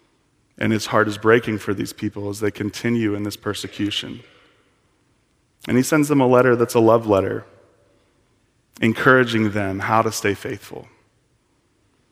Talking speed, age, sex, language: 150 wpm, 30-49, male, English